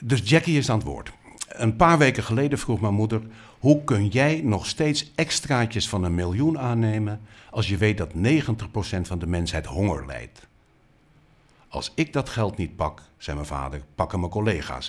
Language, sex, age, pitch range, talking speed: Dutch, male, 60-79, 90-135 Hz, 180 wpm